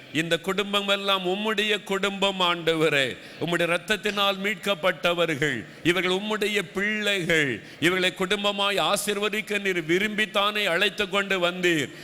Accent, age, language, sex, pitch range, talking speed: native, 50-69, Tamil, male, 200-245 Hz, 90 wpm